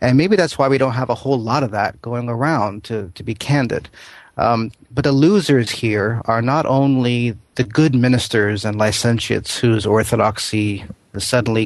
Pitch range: 105-125 Hz